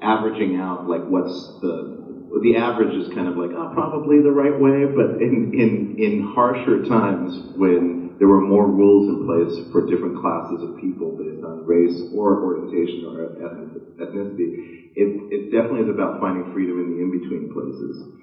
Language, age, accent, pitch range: English, 40-59, American, 90-120 Hz